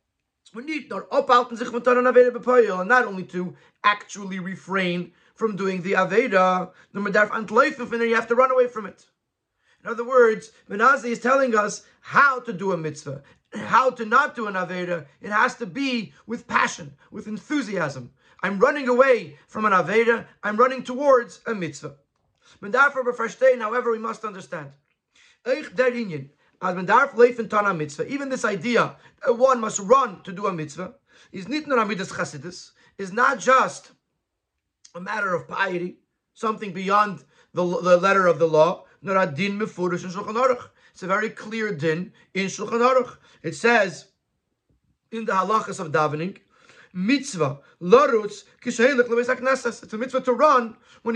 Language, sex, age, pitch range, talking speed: English, male, 30-49, 185-250 Hz, 125 wpm